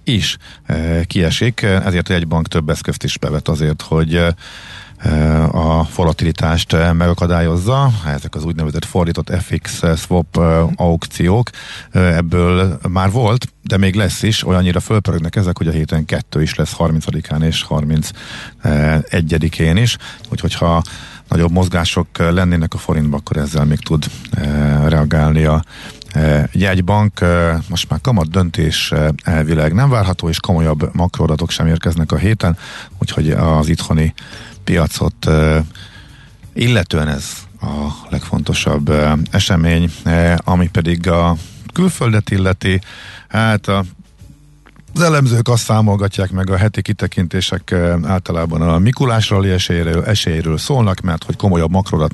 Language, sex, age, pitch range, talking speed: Hungarian, male, 50-69, 80-100 Hz, 135 wpm